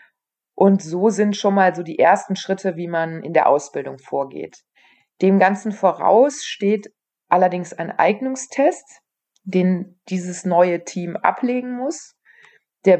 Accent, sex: German, female